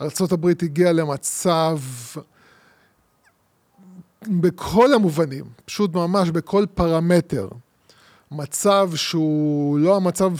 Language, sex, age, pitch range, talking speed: Hebrew, male, 20-39, 155-195 Hz, 75 wpm